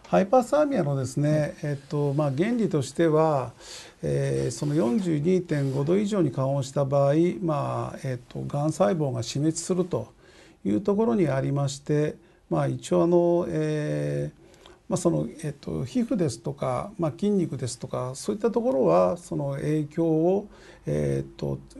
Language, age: Japanese, 50-69